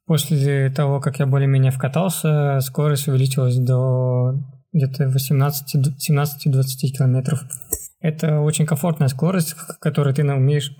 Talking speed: 110 wpm